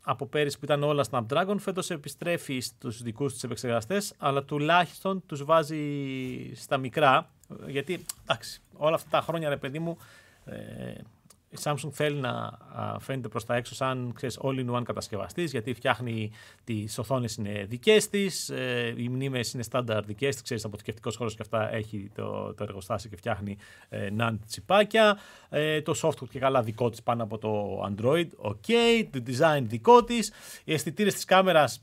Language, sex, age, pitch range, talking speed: Greek, male, 30-49, 115-160 Hz, 170 wpm